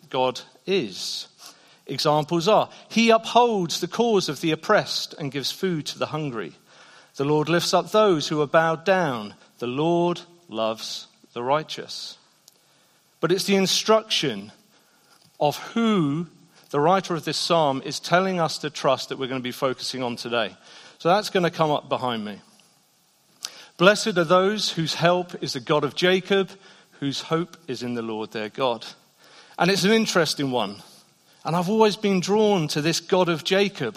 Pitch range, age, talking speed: 145-200 Hz, 40-59, 170 wpm